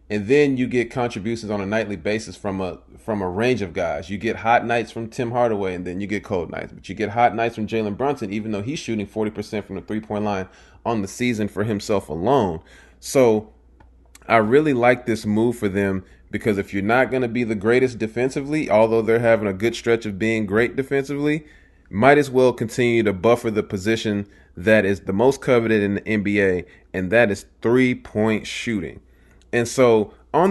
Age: 30-49